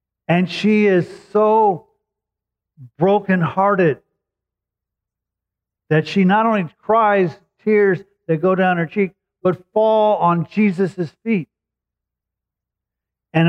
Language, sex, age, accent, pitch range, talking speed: English, male, 50-69, American, 130-175 Hz, 100 wpm